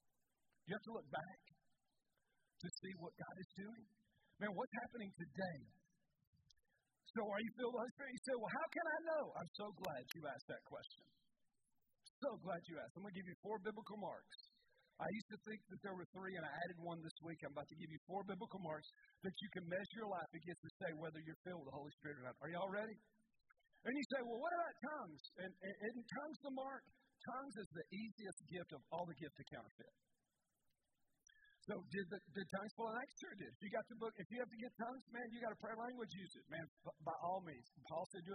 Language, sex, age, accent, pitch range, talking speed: English, male, 50-69, American, 165-220 Hz, 245 wpm